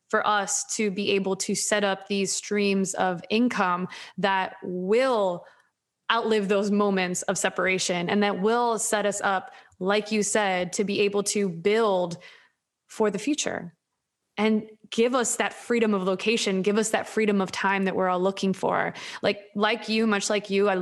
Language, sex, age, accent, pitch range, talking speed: English, female, 20-39, American, 195-215 Hz, 175 wpm